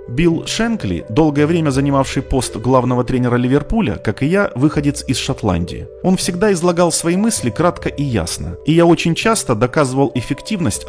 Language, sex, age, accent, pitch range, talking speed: Russian, male, 30-49, native, 110-160 Hz, 160 wpm